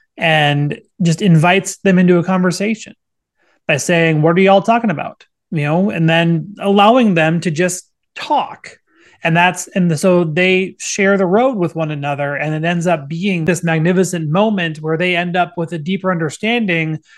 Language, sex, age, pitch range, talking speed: English, male, 30-49, 160-195 Hz, 175 wpm